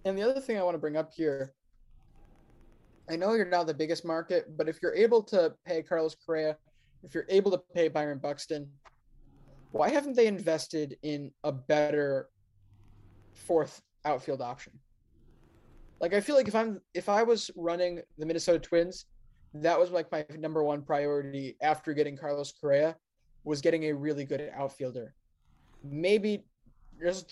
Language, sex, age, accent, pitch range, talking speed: English, male, 20-39, American, 145-175 Hz, 165 wpm